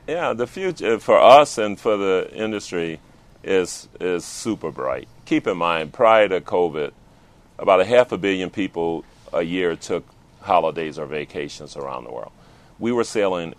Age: 40-59